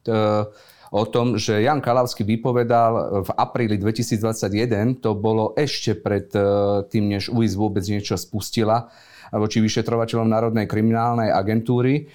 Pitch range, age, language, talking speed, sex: 110-120 Hz, 40-59, Slovak, 120 wpm, male